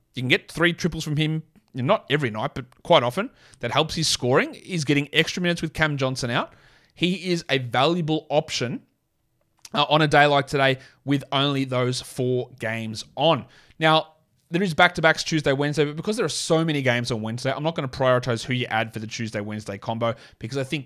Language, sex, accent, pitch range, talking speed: English, male, Australian, 120-155 Hz, 205 wpm